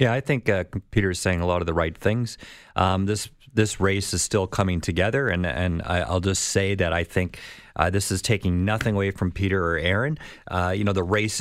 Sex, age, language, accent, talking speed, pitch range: male, 40-59, English, American, 235 wpm, 85-100 Hz